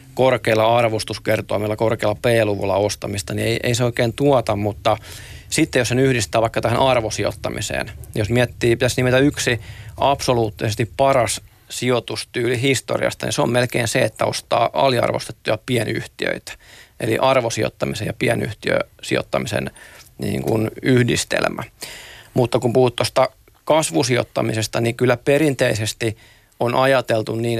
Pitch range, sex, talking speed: 110-125 Hz, male, 120 wpm